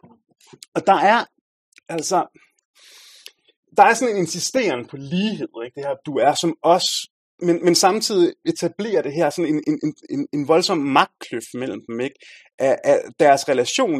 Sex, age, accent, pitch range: male, 30-49, native, 140-195 Hz